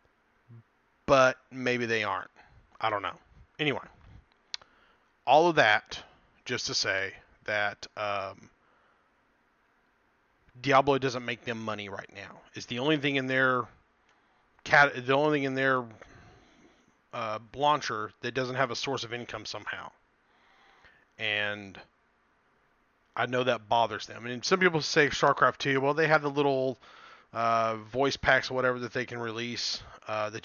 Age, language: 30-49, English